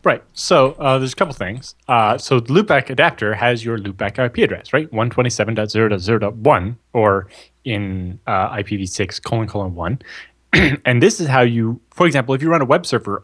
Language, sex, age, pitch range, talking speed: English, male, 20-39, 105-130 Hz, 175 wpm